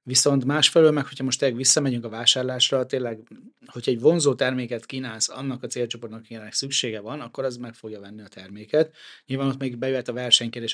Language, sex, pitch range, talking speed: Hungarian, male, 115-135 Hz, 190 wpm